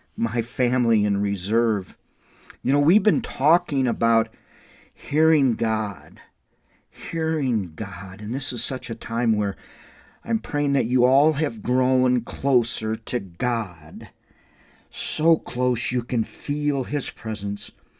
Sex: male